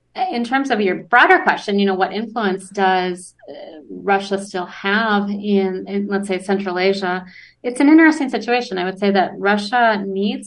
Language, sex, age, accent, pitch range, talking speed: English, female, 30-49, American, 185-205 Hz, 170 wpm